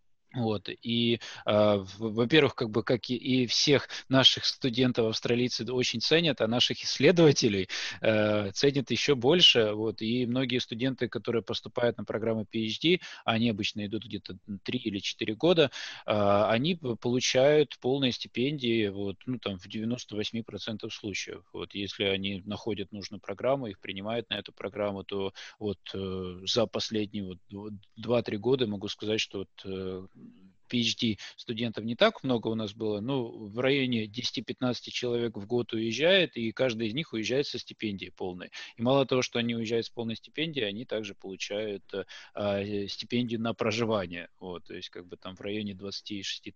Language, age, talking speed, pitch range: Russian, 20-39, 160 wpm, 105-125 Hz